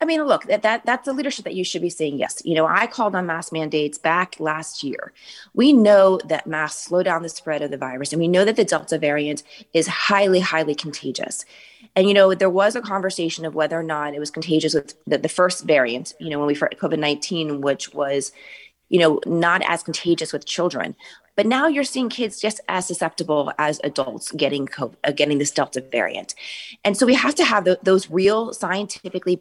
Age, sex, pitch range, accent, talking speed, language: 30-49, female, 160-220 Hz, American, 220 wpm, English